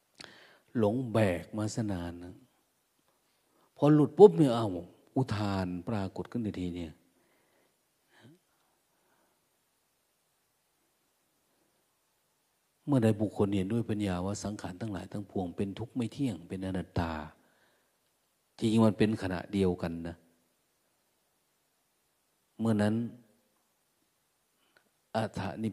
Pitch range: 90-115 Hz